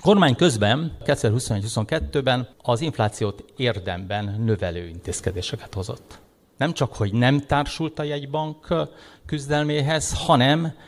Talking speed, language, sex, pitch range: 105 wpm, Hungarian, male, 100-140 Hz